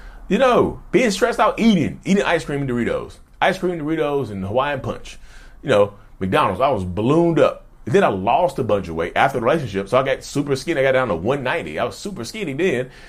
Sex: male